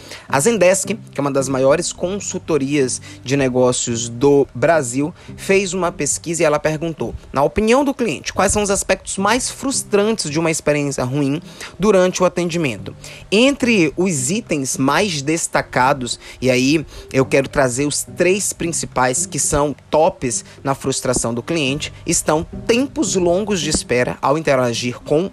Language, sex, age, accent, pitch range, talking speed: Portuguese, male, 20-39, Brazilian, 130-175 Hz, 150 wpm